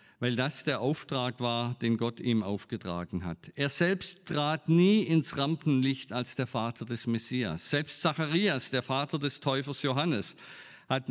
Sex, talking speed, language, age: male, 155 wpm, German, 50-69